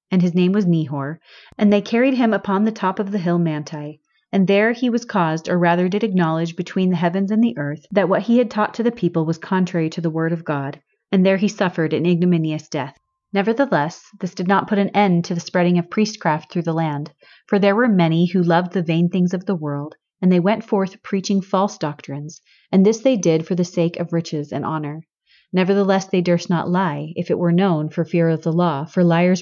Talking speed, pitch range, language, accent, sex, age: 235 wpm, 165-205 Hz, English, American, female, 30-49